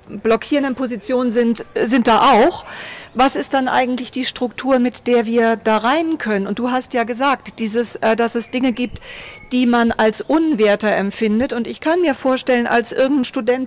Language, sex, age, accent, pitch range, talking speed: German, female, 40-59, German, 220-270 Hz, 180 wpm